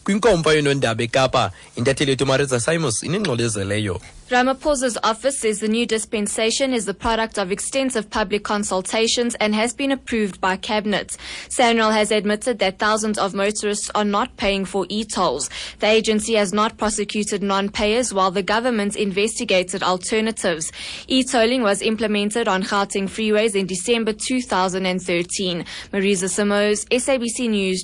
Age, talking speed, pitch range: 20-39, 120 wpm, 135-215 Hz